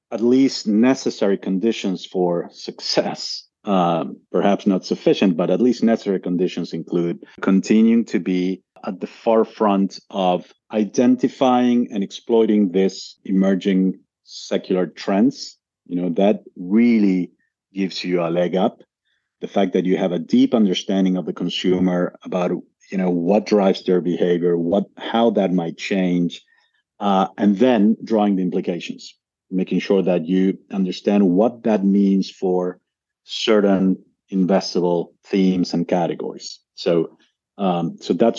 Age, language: 40-59, English